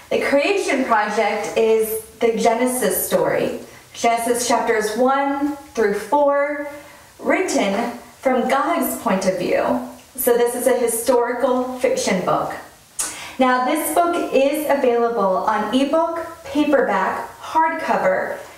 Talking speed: 110 wpm